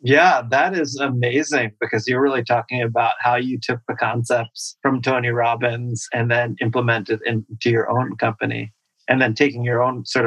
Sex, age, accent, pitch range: male, 30-49, American, 115-140 Hz